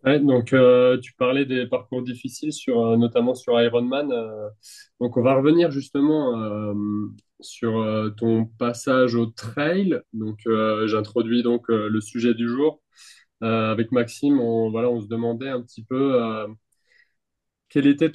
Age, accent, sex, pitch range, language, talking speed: 20-39, French, male, 115-140 Hz, French, 160 wpm